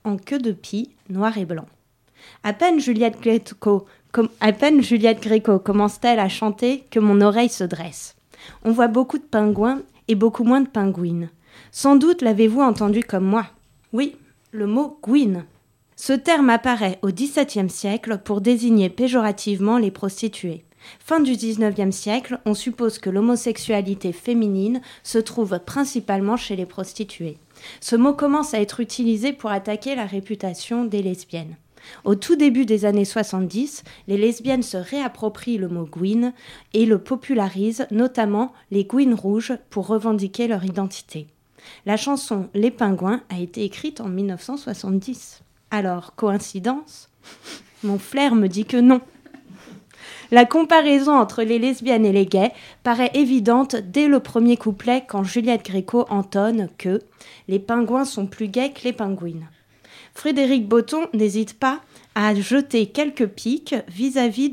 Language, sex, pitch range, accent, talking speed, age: French, female, 200-250 Hz, French, 145 wpm, 30-49